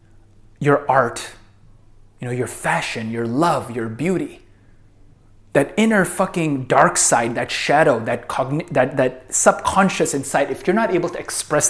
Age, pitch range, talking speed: 30-49, 110-150 Hz, 150 wpm